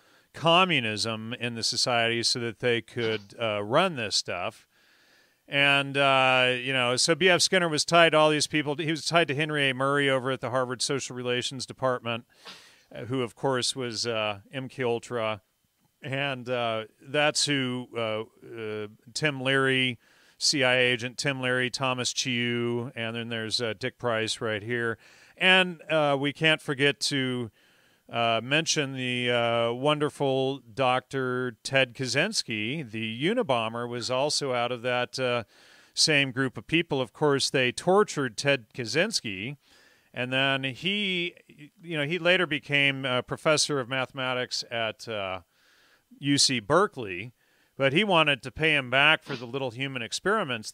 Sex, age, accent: male, 40-59, American